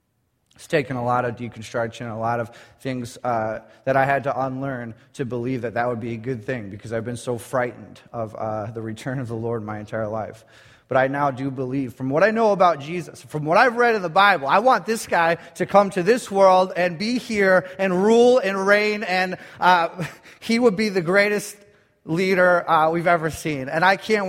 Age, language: 30-49, English